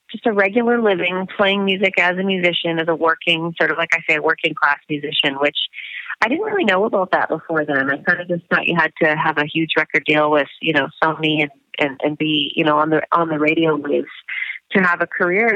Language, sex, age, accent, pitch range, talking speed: English, female, 30-49, American, 155-190 Hz, 245 wpm